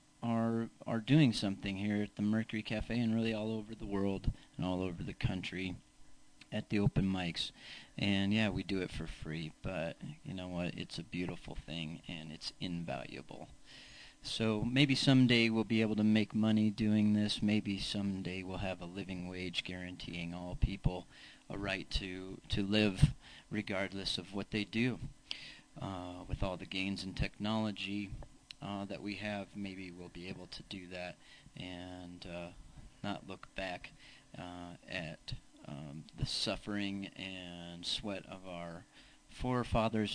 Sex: male